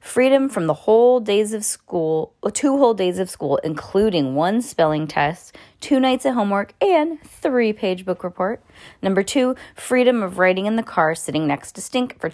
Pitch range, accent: 165-235 Hz, American